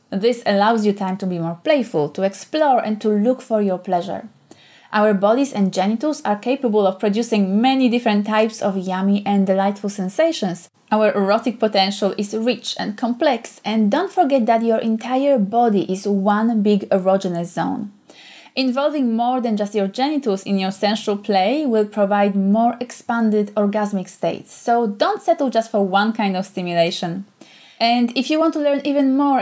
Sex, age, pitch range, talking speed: female, 20-39, 200-245 Hz, 170 wpm